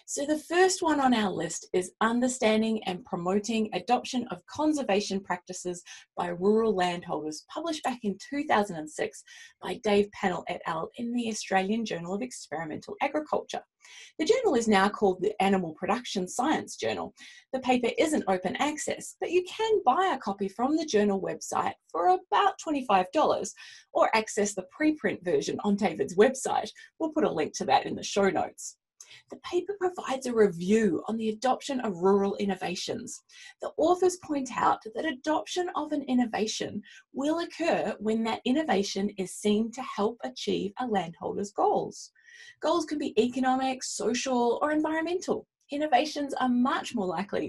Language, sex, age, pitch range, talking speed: English, female, 30-49, 200-310 Hz, 160 wpm